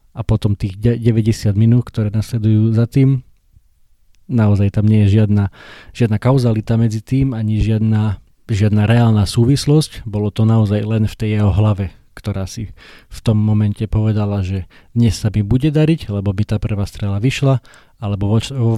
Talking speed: 165 wpm